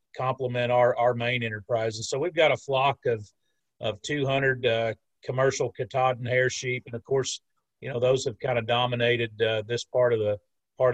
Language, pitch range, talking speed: English, 120-140 Hz, 190 wpm